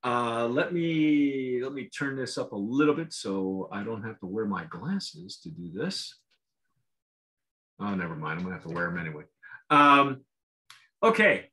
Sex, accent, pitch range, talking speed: male, American, 135-175 Hz, 175 wpm